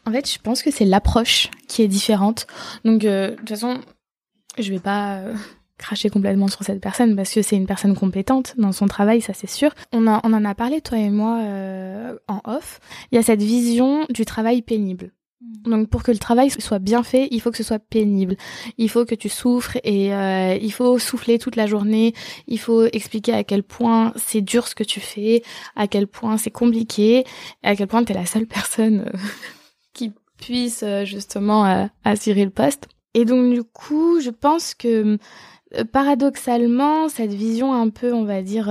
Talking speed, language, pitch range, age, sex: 200 wpm, French, 205-240 Hz, 20-39, female